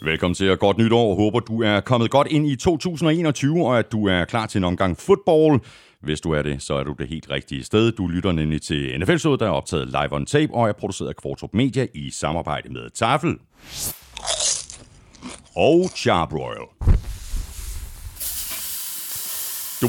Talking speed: 175 wpm